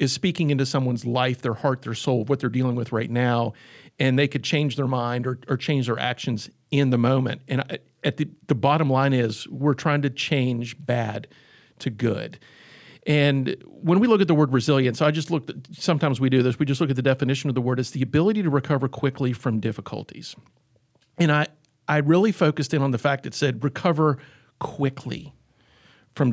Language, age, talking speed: English, 50-69, 205 wpm